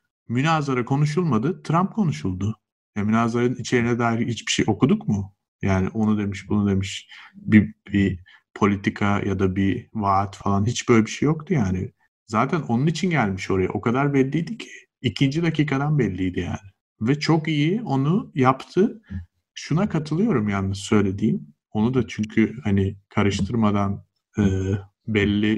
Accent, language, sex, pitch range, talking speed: native, Turkish, male, 100-145 Hz, 140 wpm